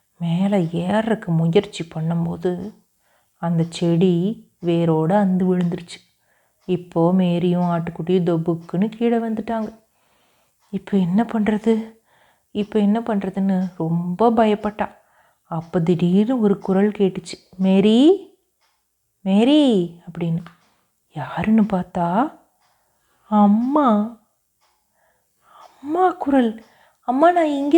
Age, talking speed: 30-49, 80 wpm